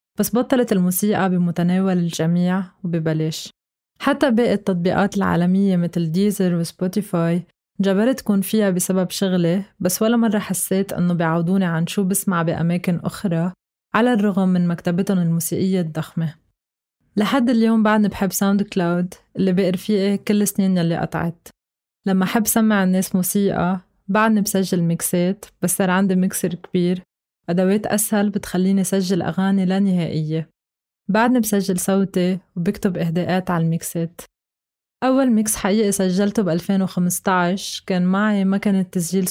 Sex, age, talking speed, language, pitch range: female, 20-39, 130 wpm, Arabic, 175-205 Hz